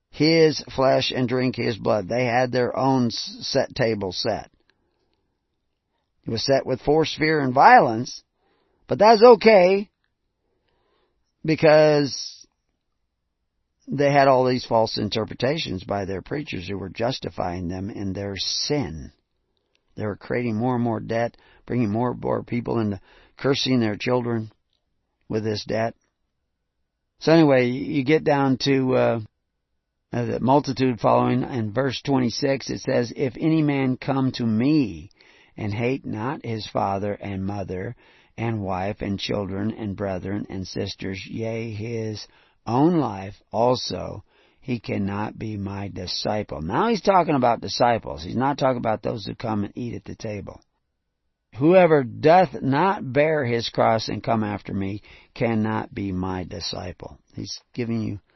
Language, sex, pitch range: English, male, 100-135 Hz